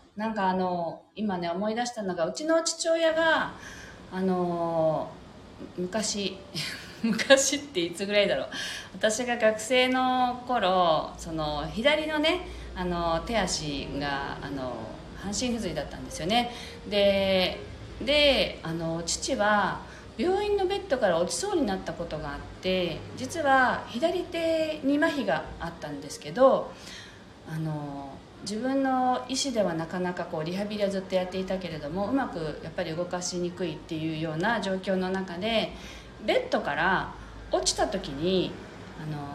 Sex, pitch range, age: female, 165-260 Hz, 40-59